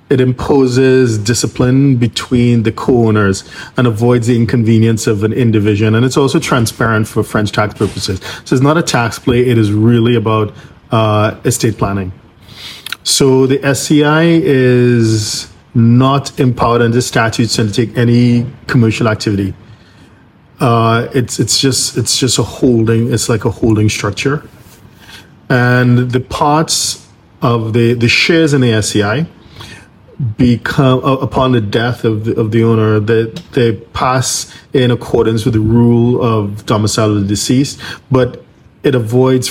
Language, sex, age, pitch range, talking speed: English, male, 40-59, 110-130 Hz, 145 wpm